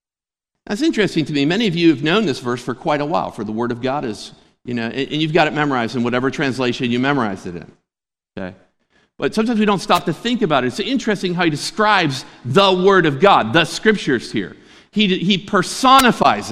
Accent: American